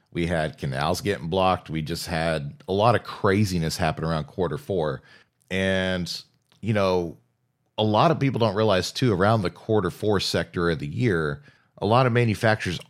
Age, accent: 40-59, American